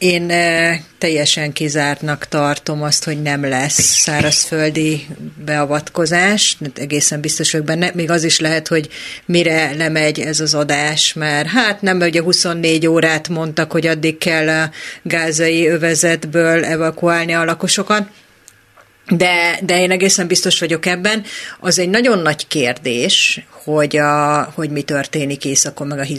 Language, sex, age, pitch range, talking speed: Hungarian, female, 30-49, 155-170 Hz, 135 wpm